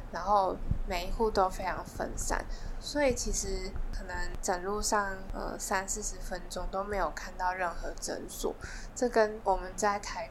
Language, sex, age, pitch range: Chinese, female, 10-29, 195-230 Hz